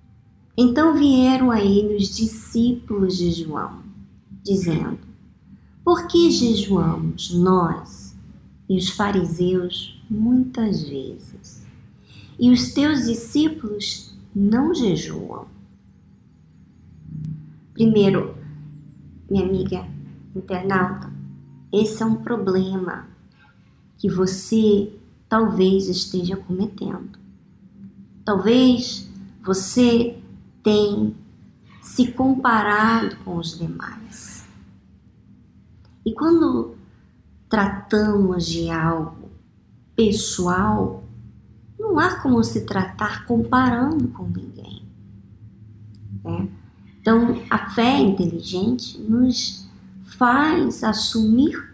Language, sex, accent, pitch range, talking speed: Portuguese, male, Brazilian, 165-240 Hz, 80 wpm